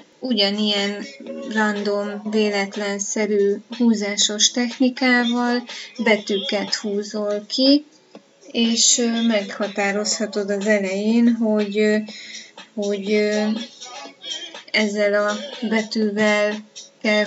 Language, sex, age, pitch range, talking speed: Hungarian, female, 20-39, 200-235 Hz, 65 wpm